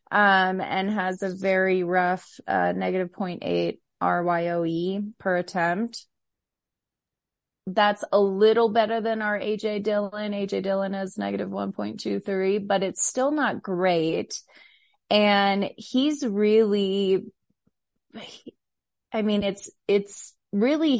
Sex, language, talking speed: female, English, 110 wpm